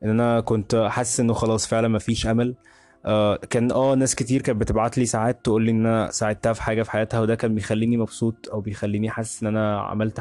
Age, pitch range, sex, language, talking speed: 20-39, 105-120 Hz, male, Arabic, 215 wpm